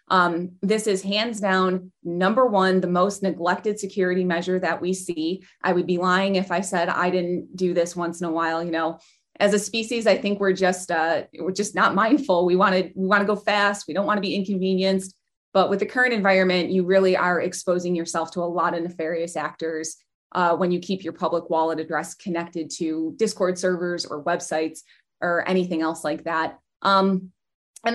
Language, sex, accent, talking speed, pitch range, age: English, female, American, 200 wpm, 175-215 Hz, 20-39